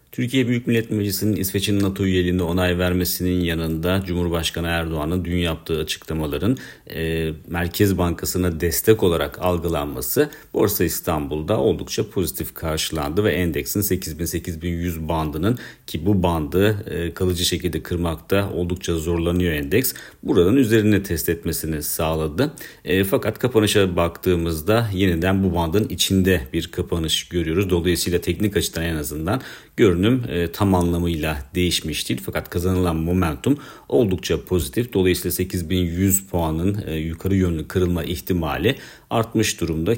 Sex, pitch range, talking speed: male, 80-95 Hz, 120 wpm